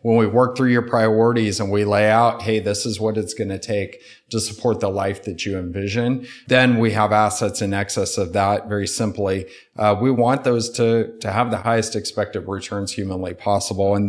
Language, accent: English, American